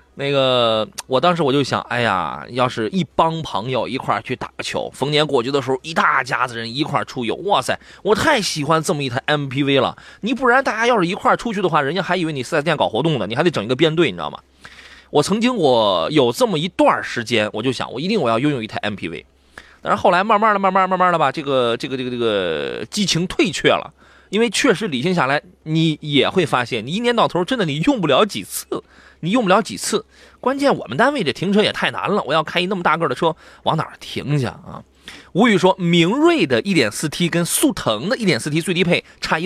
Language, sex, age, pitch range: Chinese, male, 20-39, 125-195 Hz